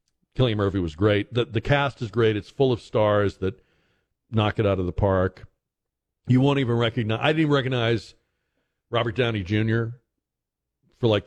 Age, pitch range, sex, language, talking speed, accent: 50-69, 95-130 Hz, male, English, 175 wpm, American